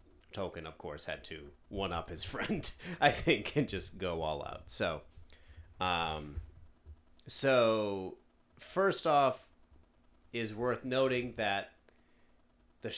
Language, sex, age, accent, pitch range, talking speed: English, male, 30-49, American, 80-115 Hz, 125 wpm